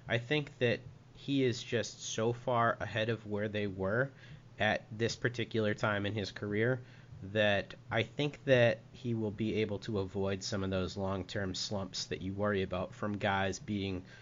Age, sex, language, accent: 30-49, male, English, American